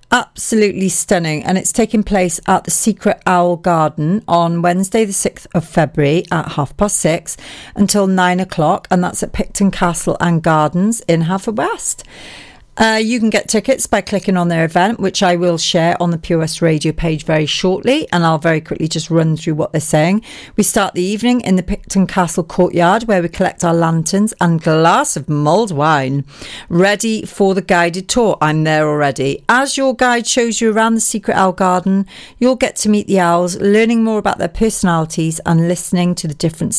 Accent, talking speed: British, 190 wpm